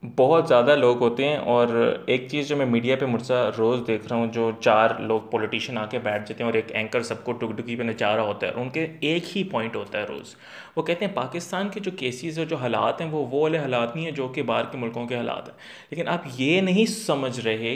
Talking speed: 265 wpm